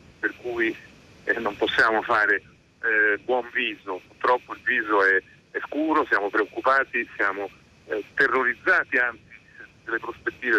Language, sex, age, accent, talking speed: Italian, male, 50-69, native, 130 wpm